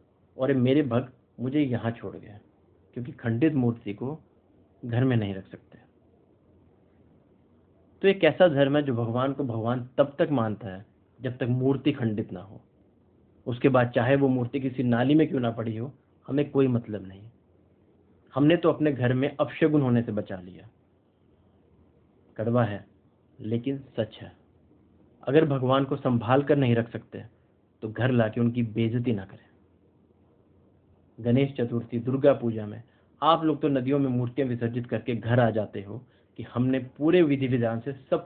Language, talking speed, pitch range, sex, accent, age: Hindi, 165 wpm, 100-135 Hz, male, native, 50-69